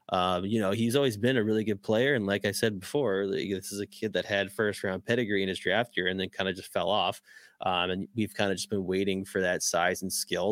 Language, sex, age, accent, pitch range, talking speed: English, male, 20-39, American, 95-115 Hz, 280 wpm